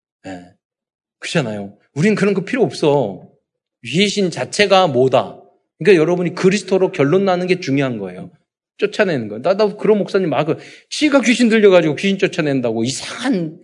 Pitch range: 125-195 Hz